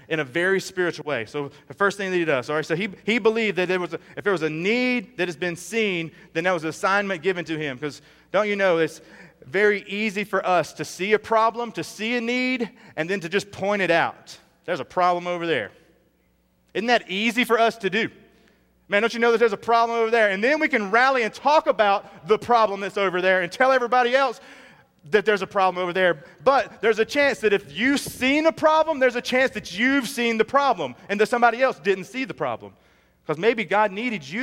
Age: 30-49